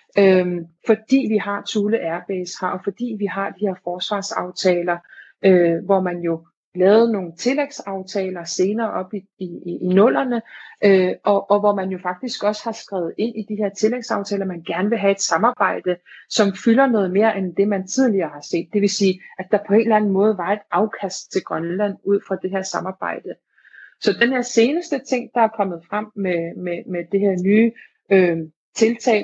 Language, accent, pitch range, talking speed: Danish, native, 190-225 Hz, 185 wpm